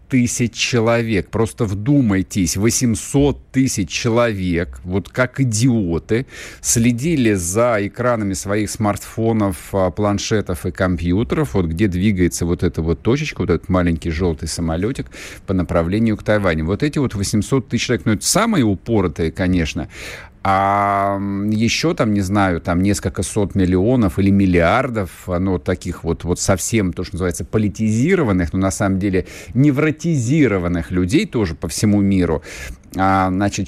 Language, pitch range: Russian, 90-110 Hz